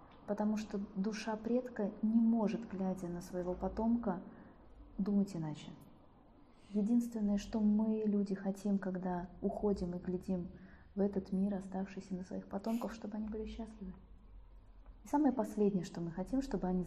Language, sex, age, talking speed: Russian, female, 20-39, 140 wpm